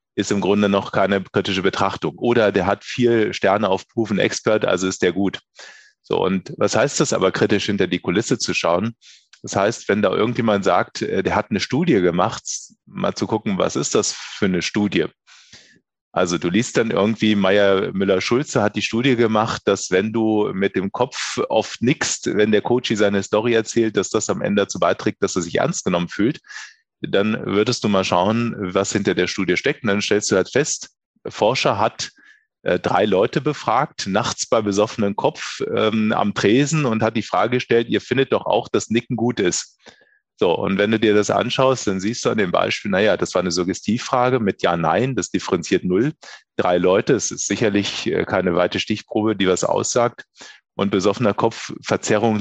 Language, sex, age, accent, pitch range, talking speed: German, male, 30-49, German, 100-115 Hz, 195 wpm